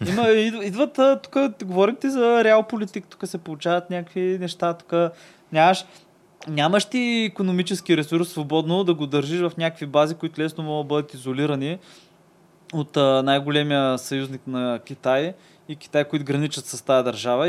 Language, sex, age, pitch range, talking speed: Bulgarian, male, 20-39, 140-175 Hz, 150 wpm